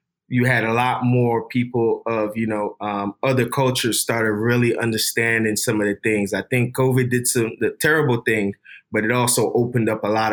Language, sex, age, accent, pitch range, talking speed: English, male, 20-39, American, 110-125 Hz, 200 wpm